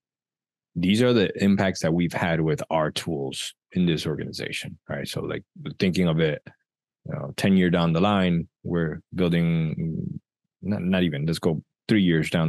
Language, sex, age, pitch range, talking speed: English, male, 20-39, 80-95 Hz, 175 wpm